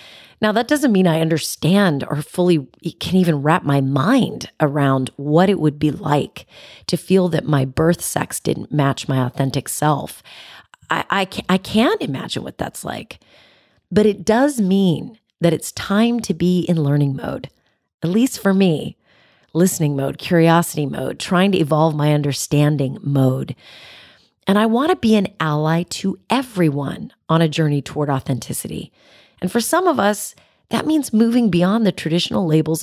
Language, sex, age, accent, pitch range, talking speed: English, female, 30-49, American, 145-190 Hz, 165 wpm